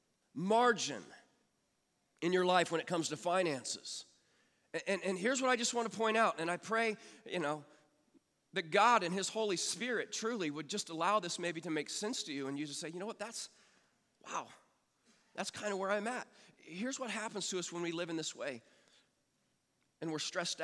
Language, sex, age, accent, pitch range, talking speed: English, male, 40-59, American, 140-185 Hz, 205 wpm